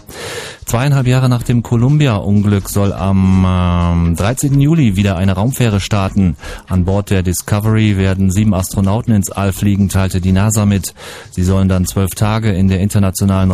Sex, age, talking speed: male, 30-49, 160 wpm